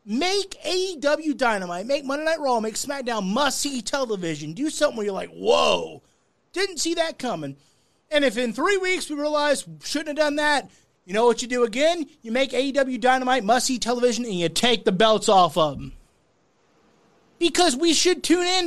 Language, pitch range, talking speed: English, 210-290 Hz, 185 wpm